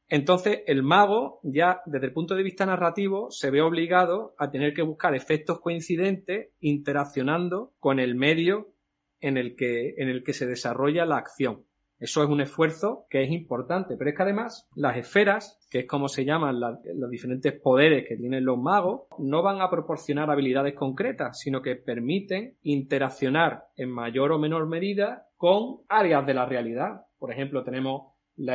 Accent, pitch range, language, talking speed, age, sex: Spanish, 130-175 Hz, Spanish, 170 wpm, 30-49, male